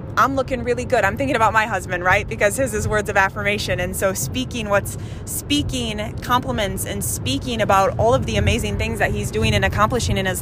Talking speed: 215 wpm